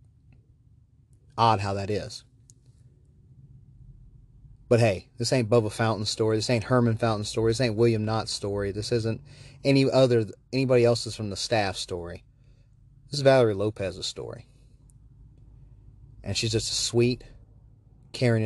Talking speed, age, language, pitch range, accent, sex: 135 wpm, 30-49, English, 105-125 Hz, American, male